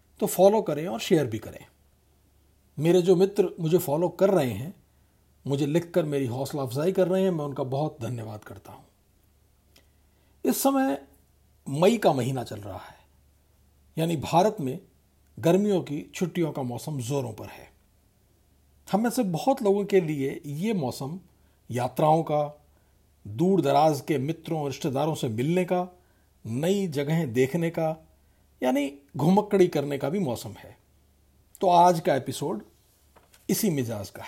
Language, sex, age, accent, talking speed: Hindi, male, 50-69, native, 145 wpm